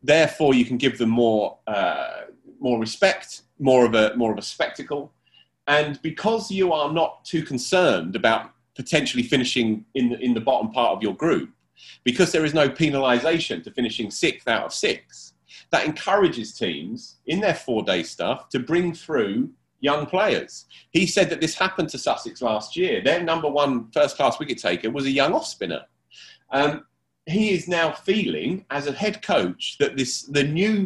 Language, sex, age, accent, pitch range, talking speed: English, male, 30-49, British, 110-160 Hz, 175 wpm